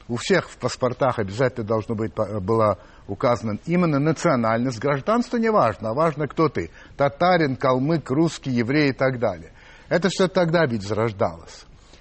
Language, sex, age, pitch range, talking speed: Russian, male, 60-79, 120-175 Hz, 145 wpm